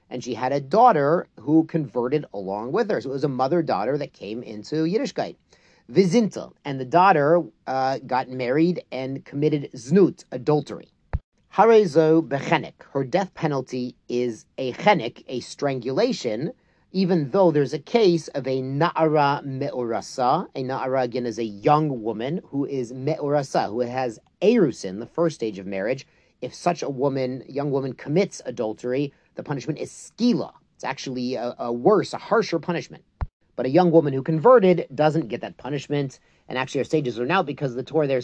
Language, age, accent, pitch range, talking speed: English, 40-59, American, 130-165 Hz, 170 wpm